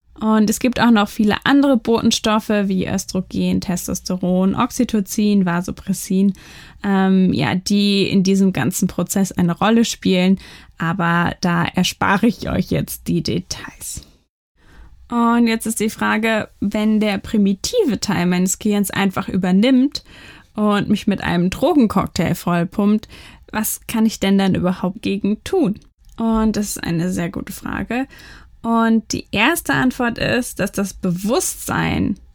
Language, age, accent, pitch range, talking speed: German, 10-29, German, 185-220 Hz, 135 wpm